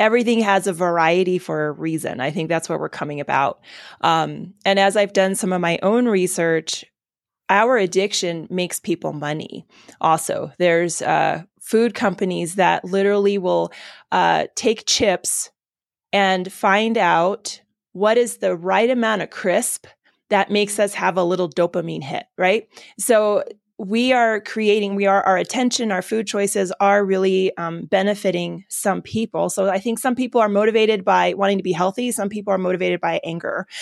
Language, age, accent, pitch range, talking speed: English, 20-39, American, 180-215 Hz, 165 wpm